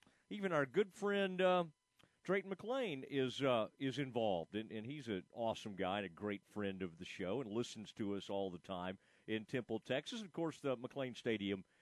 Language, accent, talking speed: English, American, 205 wpm